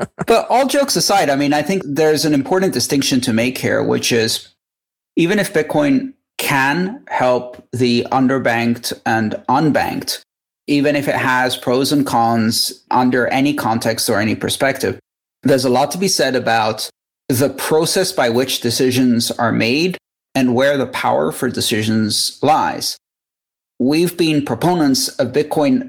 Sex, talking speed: male, 150 wpm